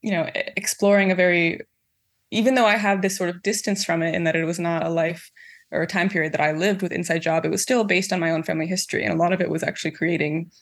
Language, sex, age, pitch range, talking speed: English, female, 20-39, 165-200 Hz, 275 wpm